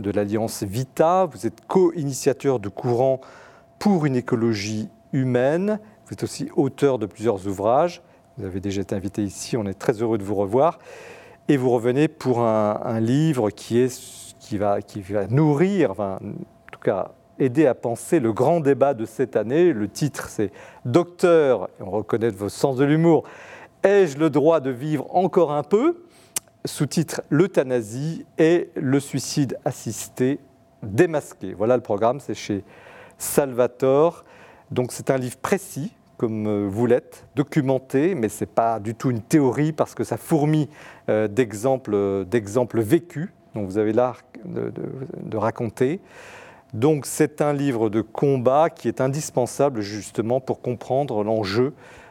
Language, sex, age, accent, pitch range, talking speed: French, male, 40-59, French, 110-155 Hz, 160 wpm